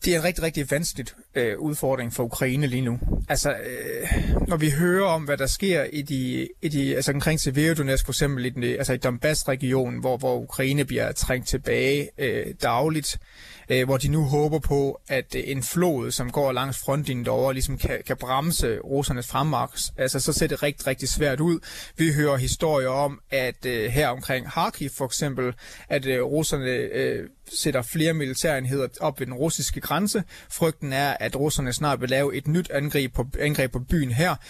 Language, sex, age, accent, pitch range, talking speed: Danish, male, 30-49, native, 130-155 Hz, 190 wpm